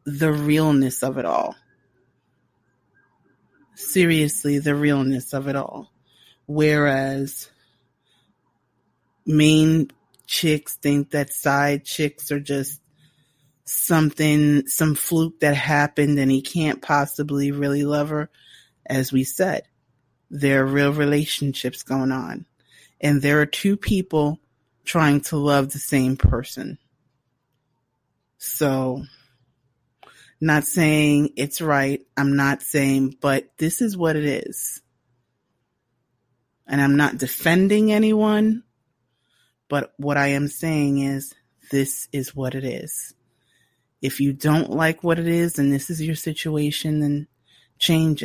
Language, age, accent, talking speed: English, 30-49, American, 120 wpm